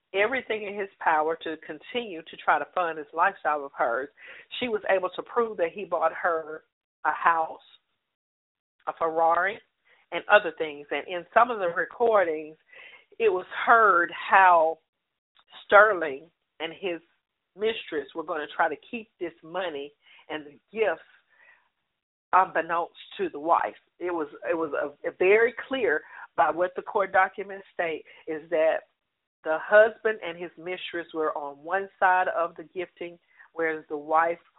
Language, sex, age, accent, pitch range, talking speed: English, female, 50-69, American, 160-215 Hz, 155 wpm